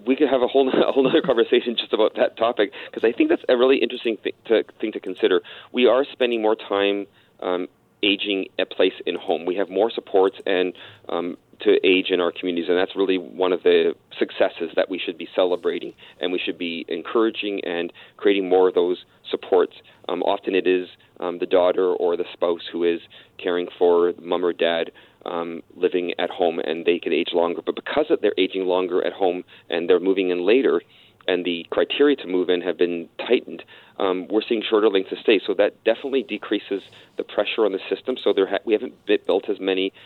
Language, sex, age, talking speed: English, male, 30-49, 205 wpm